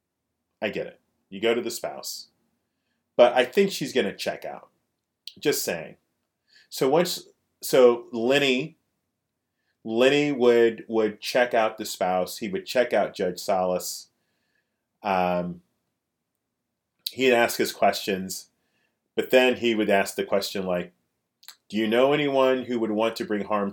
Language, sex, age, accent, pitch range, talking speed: English, male, 30-49, American, 95-120 Hz, 145 wpm